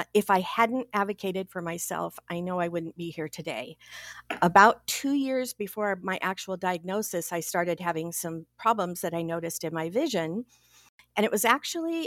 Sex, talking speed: female, 175 wpm